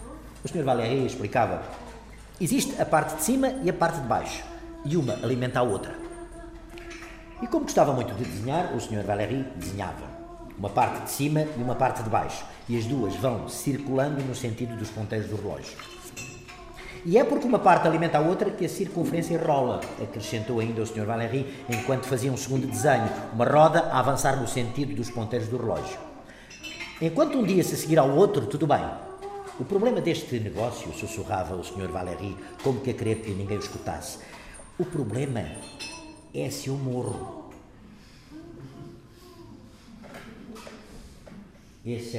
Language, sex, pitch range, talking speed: Portuguese, male, 110-165 Hz, 160 wpm